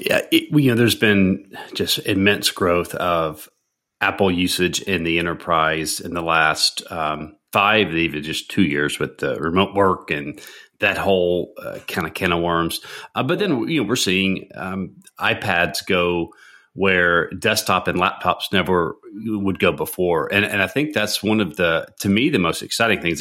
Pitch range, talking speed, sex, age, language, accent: 85-100 Hz, 180 wpm, male, 30-49, English, American